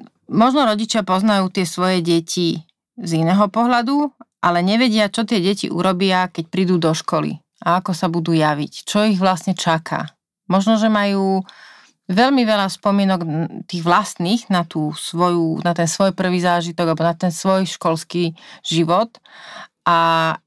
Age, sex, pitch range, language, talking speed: 30-49, female, 165-200 Hz, Slovak, 150 wpm